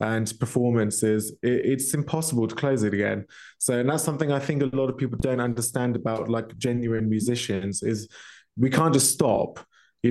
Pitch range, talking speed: 115-130 Hz, 185 wpm